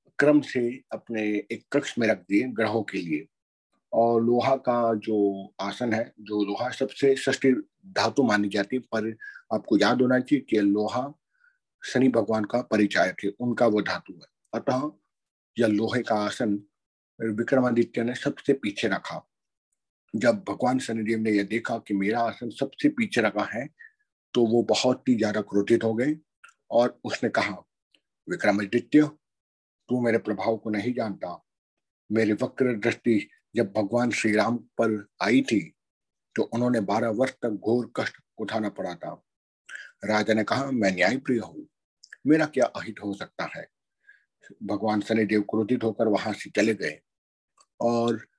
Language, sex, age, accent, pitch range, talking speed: Hindi, male, 50-69, native, 110-130 Hz, 145 wpm